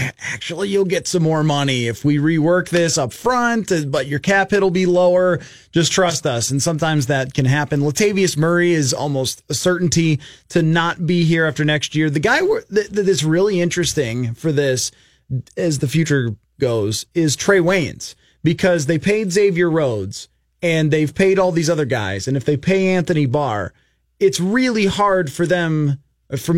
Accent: American